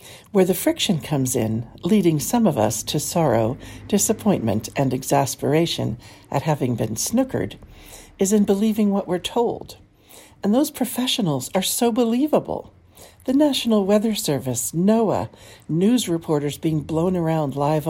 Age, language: 60-79, English